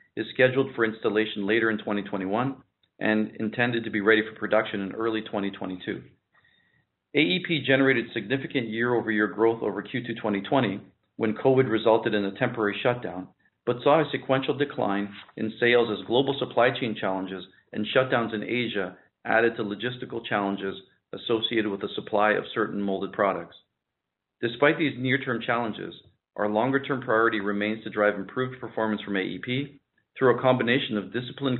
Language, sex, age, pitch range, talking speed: English, male, 40-59, 100-125 Hz, 150 wpm